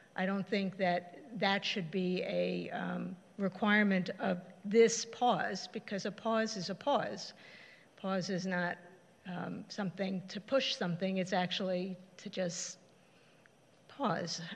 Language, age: English, 50-69